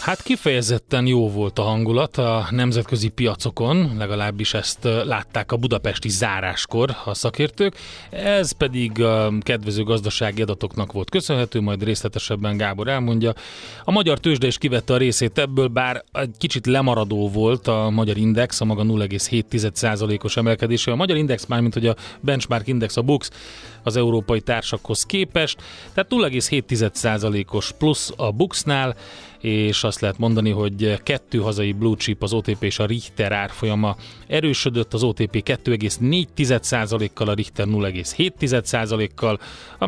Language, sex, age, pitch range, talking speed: Hungarian, male, 30-49, 105-130 Hz, 140 wpm